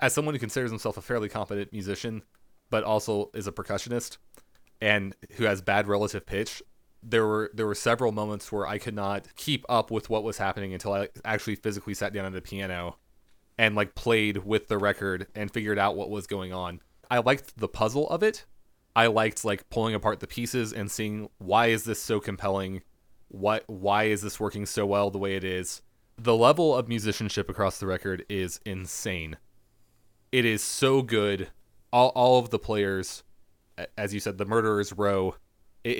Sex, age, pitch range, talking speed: male, 20-39, 95-115 Hz, 190 wpm